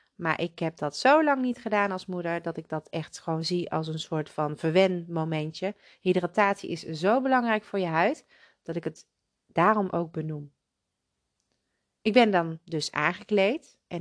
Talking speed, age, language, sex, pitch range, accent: 175 wpm, 30-49, Dutch, female, 160-220 Hz, Dutch